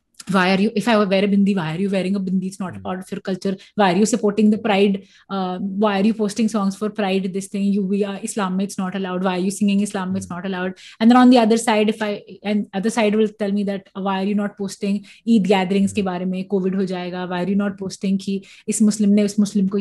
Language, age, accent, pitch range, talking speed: English, 20-39, Indian, 195-240 Hz, 280 wpm